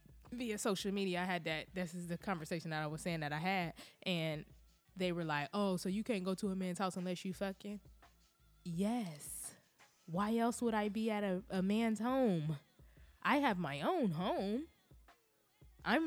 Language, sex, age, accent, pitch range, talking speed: English, female, 20-39, American, 175-260 Hz, 185 wpm